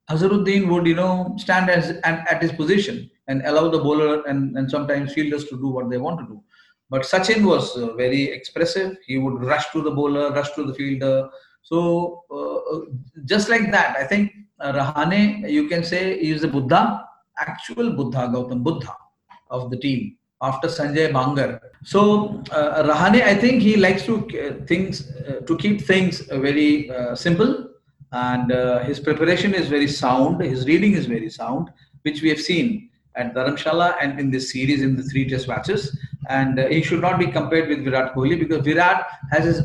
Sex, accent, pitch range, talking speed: male, Indian, 140-180 Hz, 190 wpm